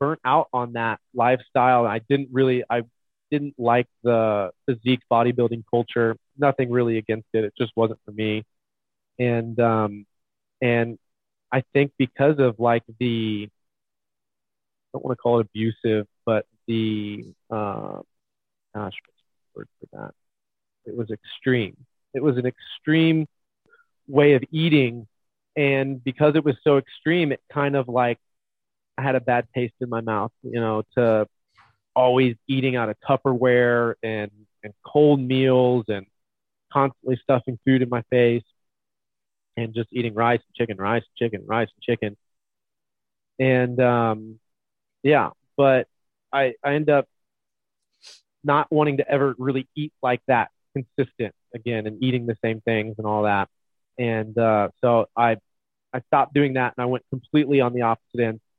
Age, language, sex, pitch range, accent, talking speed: 30-49, English, male, 110-135 Hz, American, 155 wpm